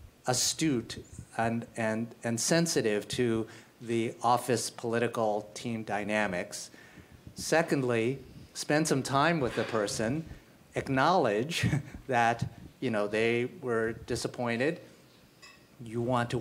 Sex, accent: male, American